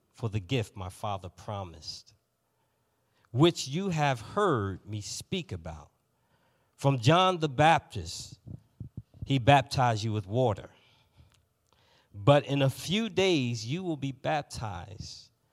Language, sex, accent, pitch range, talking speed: English, male, American, 105-140 Hz, 120 wpm